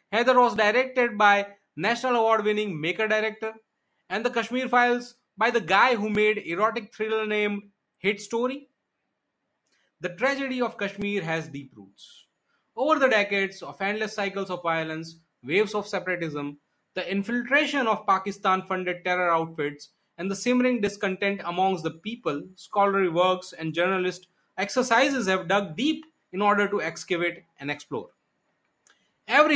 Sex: male